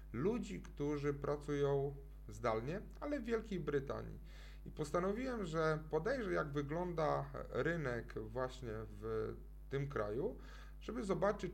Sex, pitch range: male, 120-150 Hz